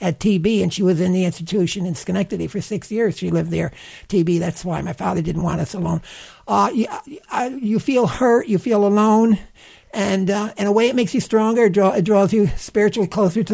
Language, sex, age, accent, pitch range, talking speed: English, male, 60-79, American, 180-235 Hz, 215 wpm